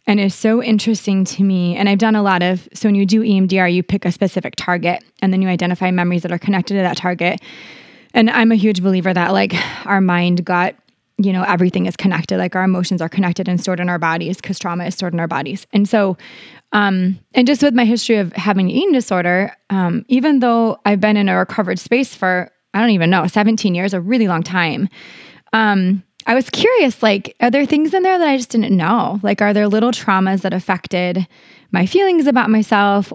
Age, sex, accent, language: 20-39, female, American, English